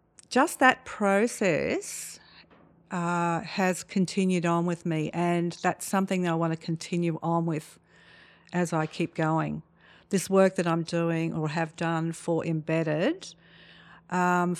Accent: Australian